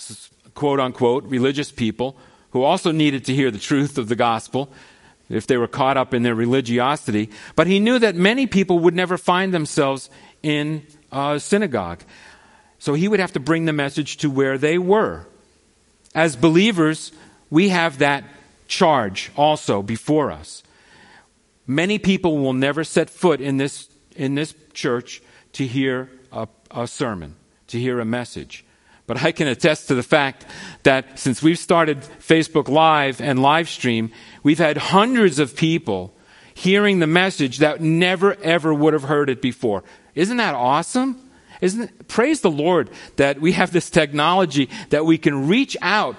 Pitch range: 130-170 Hz